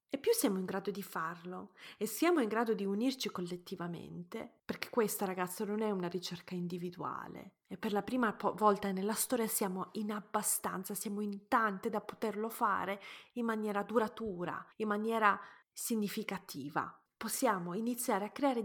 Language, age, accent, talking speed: Italian, 30-49, native, 150 wpm